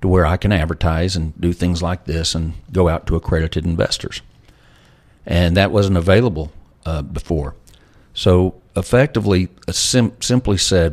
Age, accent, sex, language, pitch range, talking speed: 50-69, American, male, English, 80-95 Hz, 145 wpm